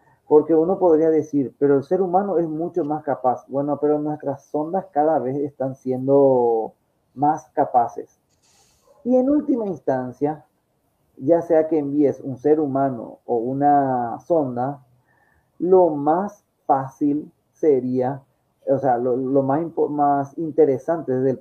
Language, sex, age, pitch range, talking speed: Spanish, male, 30-49, 135-165 Hz, 135 wpm